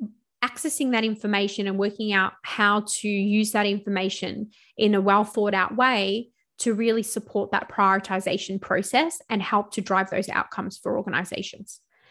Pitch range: 195-225 Hz